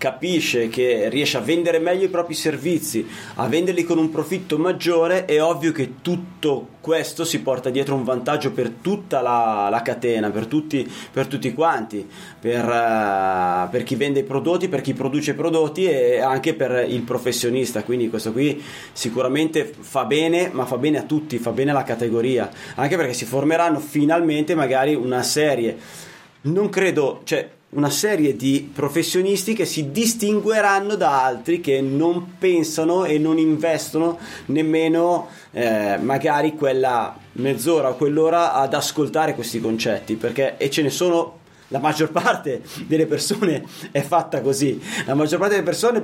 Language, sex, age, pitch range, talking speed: Italian, male, 30-49, 130-165 Hz, 160 wpm